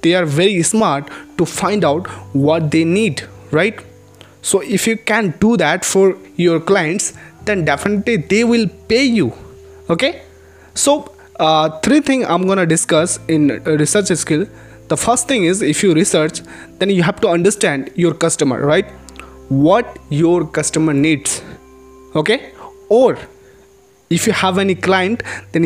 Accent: native